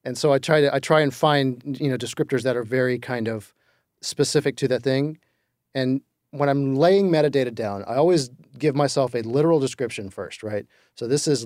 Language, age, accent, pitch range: English, 40-59, American, 110-140 Hz